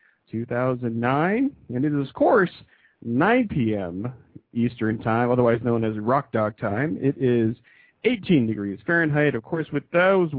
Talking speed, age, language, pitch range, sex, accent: 145 wpm, 40-59, English, 110-150 Hz, male, American